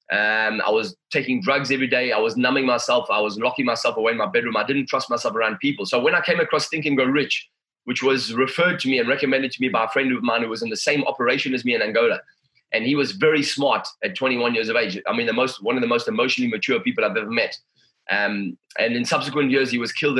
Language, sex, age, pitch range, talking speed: English, male, 20-39, 130-160 Hz, 270 wpm